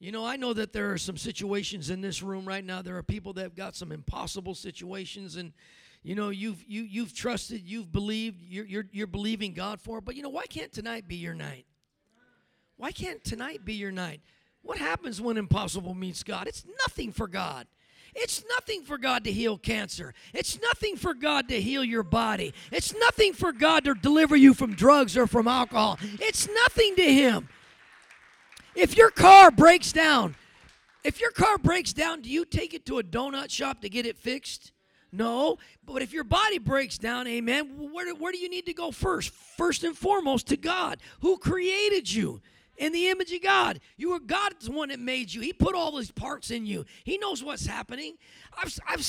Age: 40-59